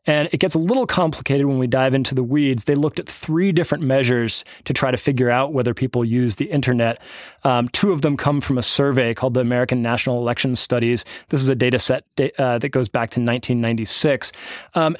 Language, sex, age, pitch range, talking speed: English, male, 20-39, 120-145 Hz, 215 wpm